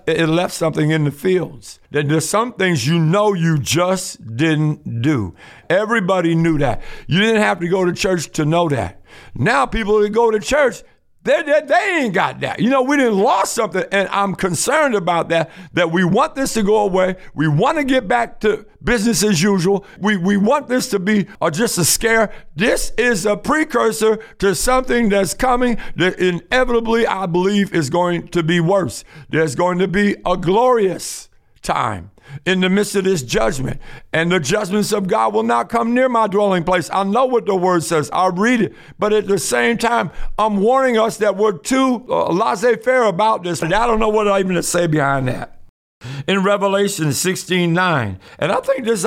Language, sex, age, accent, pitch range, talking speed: English, male, 60-79, American, 170-230 Hz, 195 wpm